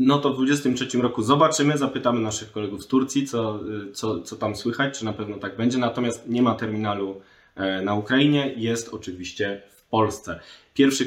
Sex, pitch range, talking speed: male, 100-120 Hz, 175 wpm